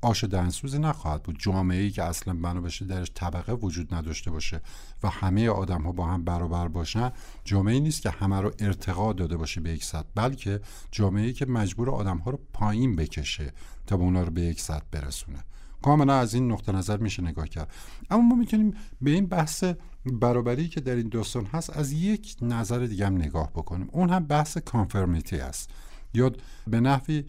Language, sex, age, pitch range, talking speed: Persian, male, 50-69, 90-135 Hz, 185 wpm